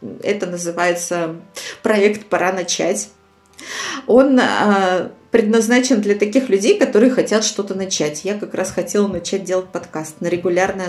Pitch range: 185-240 Hz